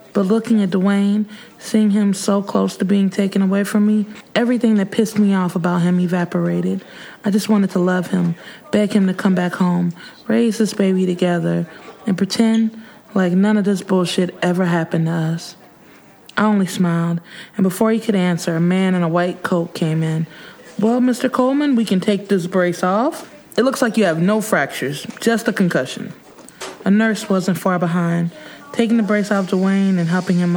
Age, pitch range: 20-39, 180-225 Hz